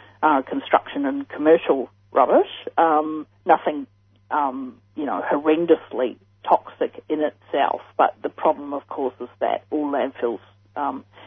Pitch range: 115-155 Hz